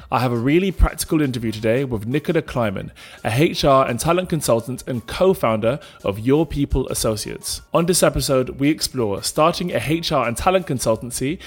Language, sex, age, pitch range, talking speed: English, male, 20-39, 120-165 Hz, 165 wpm